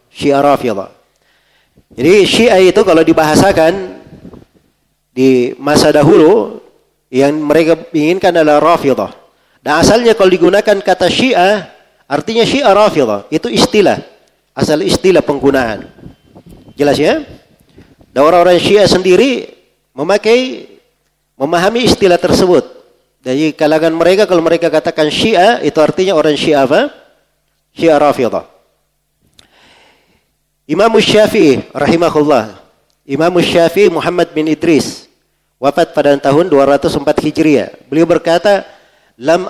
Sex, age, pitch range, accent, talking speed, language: male, 40-59, 150-185 Hz, native, 100 wpm, Indonesian